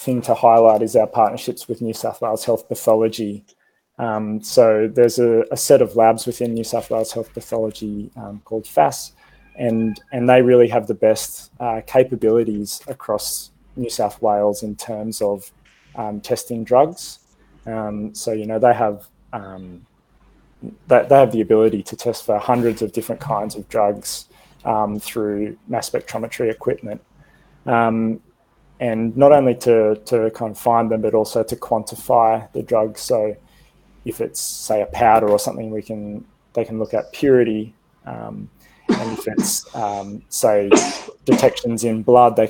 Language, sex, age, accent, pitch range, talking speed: English, male, 20-39, Australian, 105-115 Hz, 160 wpm